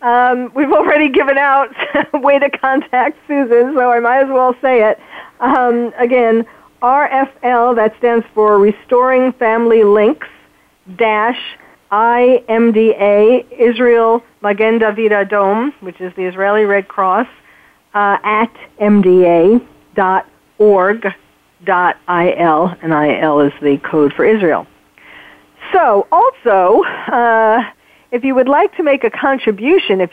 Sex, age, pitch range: female, 50-69, 190-245 Hz